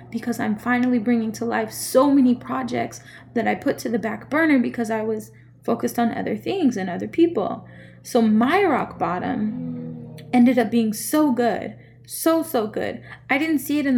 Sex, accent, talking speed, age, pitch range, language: female, American, 185 wpm, 10-29, 200-250 Hz, English